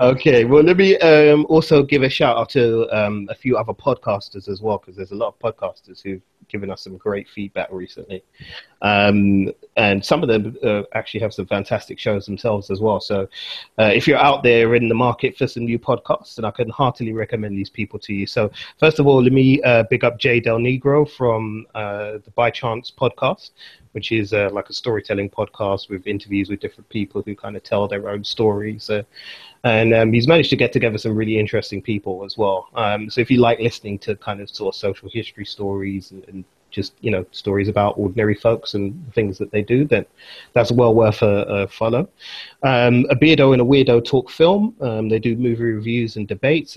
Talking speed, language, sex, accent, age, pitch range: 215 wpm, English, male, British, 30-49, 100-125 Hz